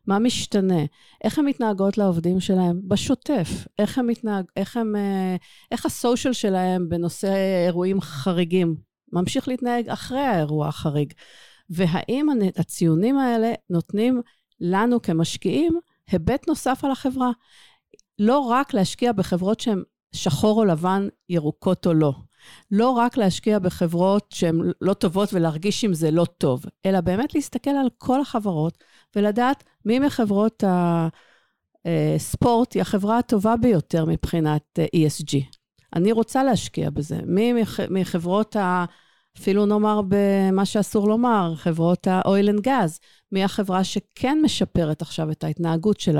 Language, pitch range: English, 175-230 Hz